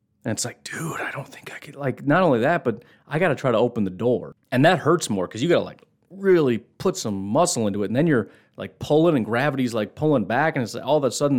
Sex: male